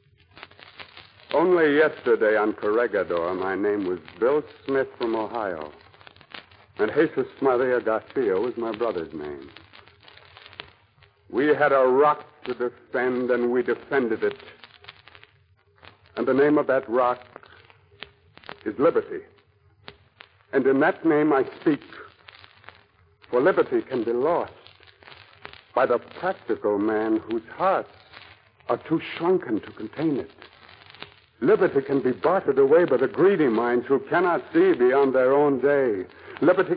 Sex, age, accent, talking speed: male, 60-79, American, 125 wpm